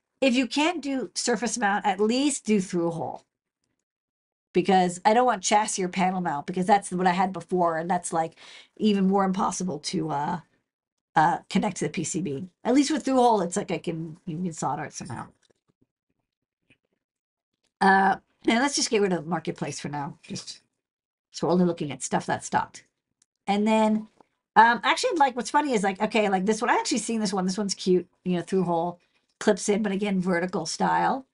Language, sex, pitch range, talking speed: English, female, 175-215 Hz, 195 wpm